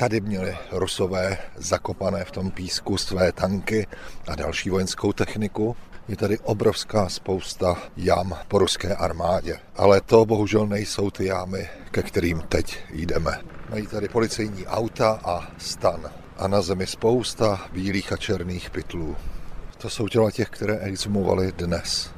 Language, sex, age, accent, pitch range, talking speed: Czech, male, 40-59, native, 85-100 Hz, 140 wpm